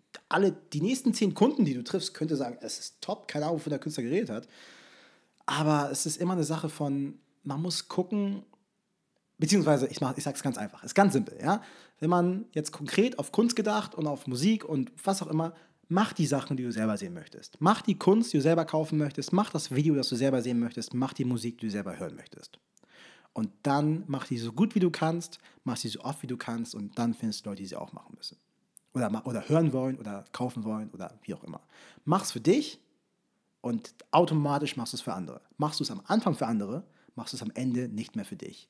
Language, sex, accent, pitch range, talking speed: German, male, German, 125-180 Hz, 235 wpm